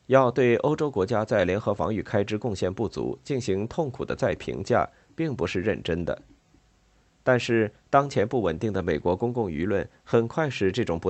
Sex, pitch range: male, 95-130 Hz